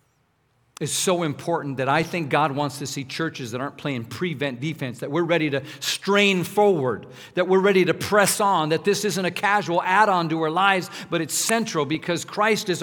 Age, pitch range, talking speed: 50-69, 170-220 Hz, 200 wpm